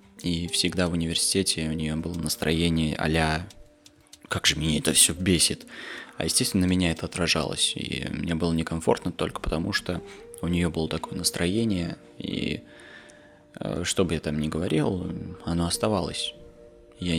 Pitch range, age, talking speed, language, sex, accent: 80-100 Hz, 20-39, 145 wpm, Russian, male, native